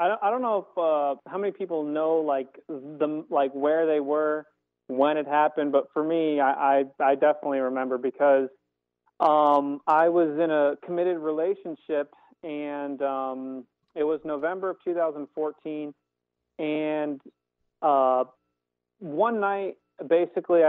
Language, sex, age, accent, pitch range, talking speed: English, male, 30-49, American, 140-165 Hz, 135 wpm